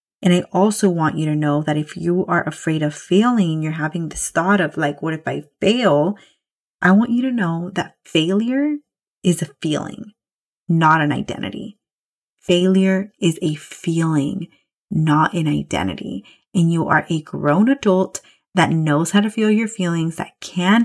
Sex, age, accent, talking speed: female, 30-49, American, 170 wpm